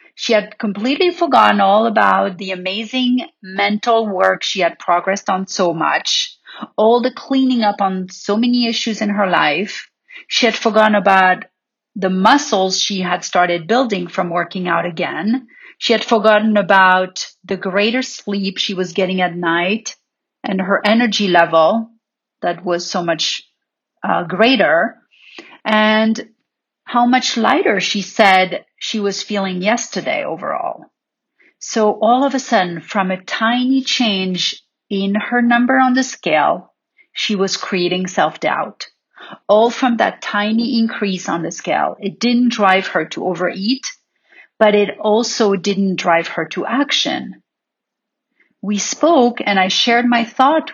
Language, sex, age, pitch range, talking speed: English, female, 40-59, 190-240 Hz, 145 wpm